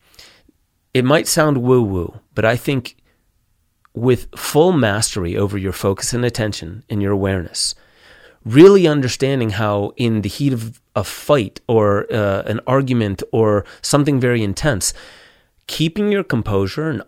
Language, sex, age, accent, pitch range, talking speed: English, male, 30-49, American, 105-135 Hz, 135 wpm